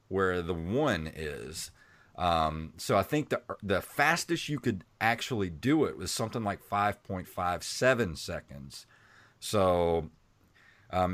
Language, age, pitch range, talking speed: English, 30-49, 90-115 Hz, 125 wpm